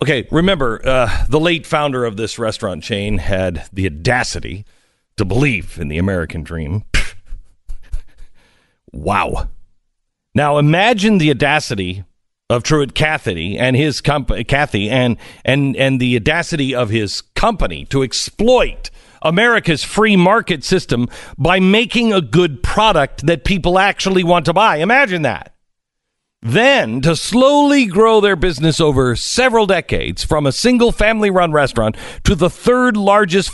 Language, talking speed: English, 140 wpm